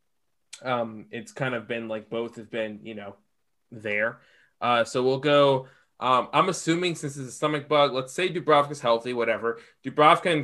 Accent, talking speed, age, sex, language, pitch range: American, 180 wpm, 20-39, male, English, 120-140 Hz